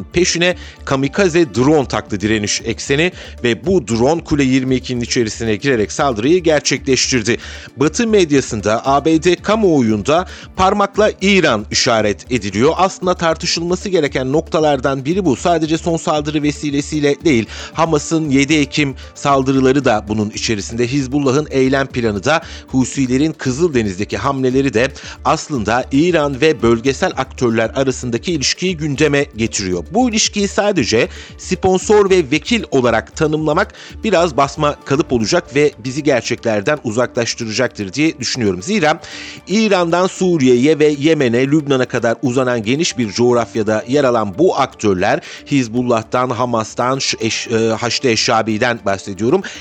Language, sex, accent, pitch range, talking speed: Turkish, male, native, 120-160 Hz, 115 wpm